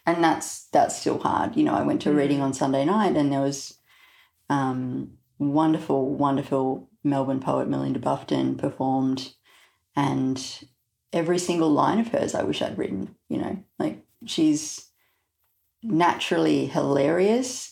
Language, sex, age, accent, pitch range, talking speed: English, female, 30-49, Australian, 130-170 Hz, 140 wpm